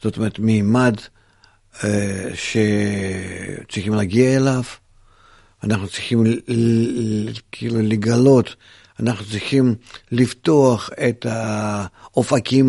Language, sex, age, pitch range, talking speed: Hebrew, male, 50-69, 110-155 Hz, 70 wpm